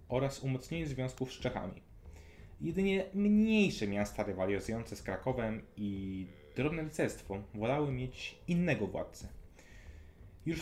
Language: Polish